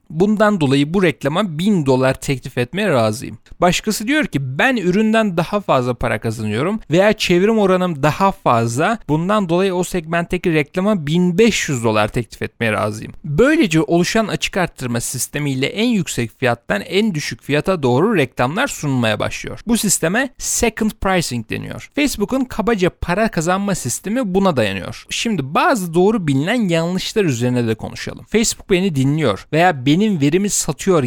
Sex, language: male, Turkish